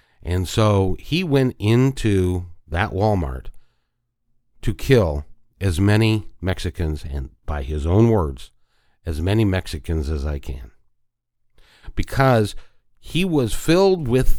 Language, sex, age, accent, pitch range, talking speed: English, male, 50-69, American, 85-120 Hz, 115 wpm